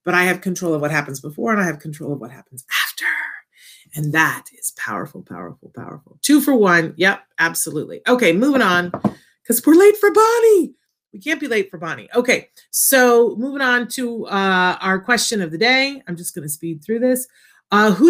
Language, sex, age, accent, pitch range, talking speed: English, female, 40-59, American, 165-245 Hz, 200 wpm